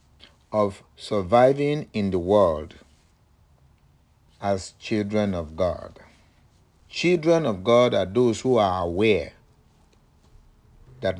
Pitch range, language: 95-115 Hz, English